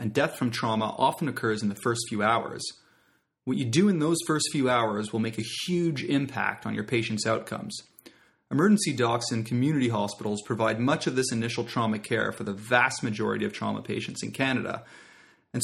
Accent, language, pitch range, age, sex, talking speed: American, English, 115-135 Hz, 30-49, male, 190 wpm